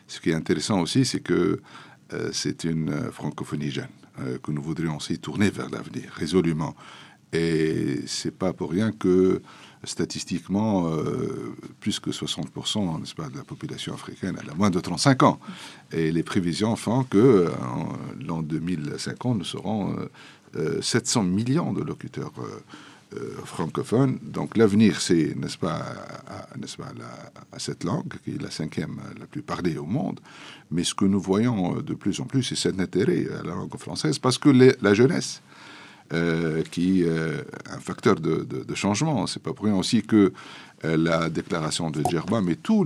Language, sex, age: French, male, 60-79